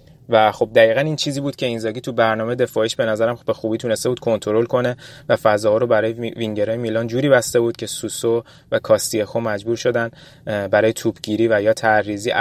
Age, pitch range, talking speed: 20-39, 110-120 Hz, 180 wpm